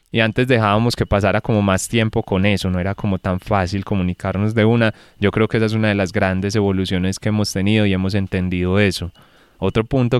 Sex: male